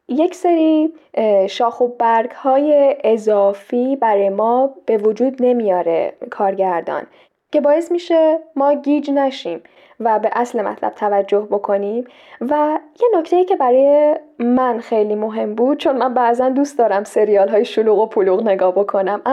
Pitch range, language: 215-285 Hz, Persian